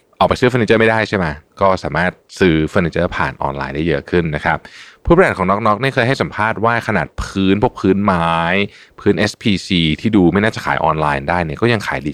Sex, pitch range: male, 80-100 Hz